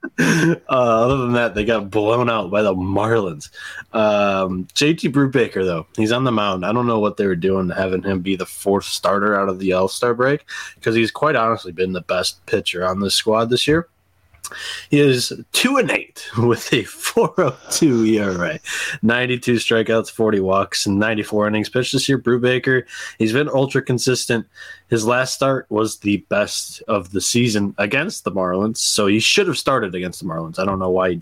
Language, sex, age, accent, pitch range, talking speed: English, male, 20-39, American, 95-120 Hz, 190 wpm